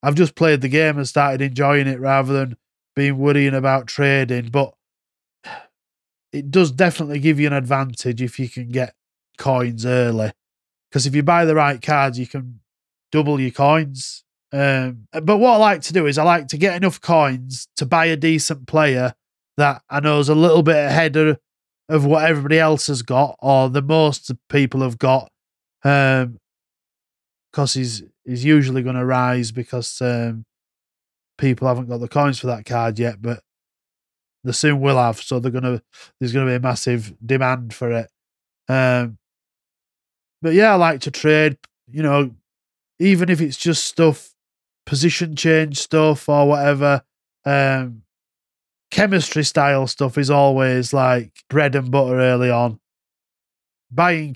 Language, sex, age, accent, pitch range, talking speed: English, male, 20-39, British, 125-155 Hz, 160 wpm